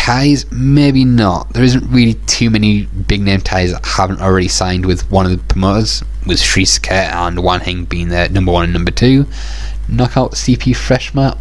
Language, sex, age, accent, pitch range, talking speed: English, male, 20-39, British, 90-110 Hz, 185 wpm